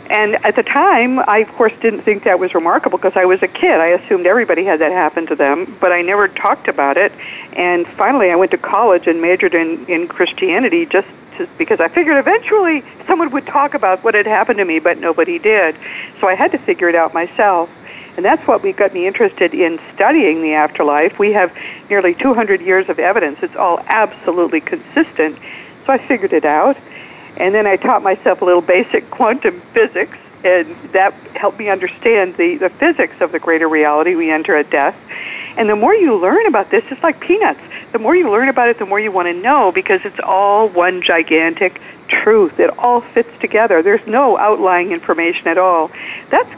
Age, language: 60-79, English